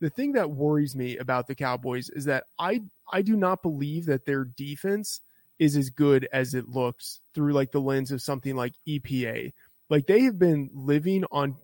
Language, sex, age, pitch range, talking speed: English, male, 20-39, 135-165 Hz, 195 wpm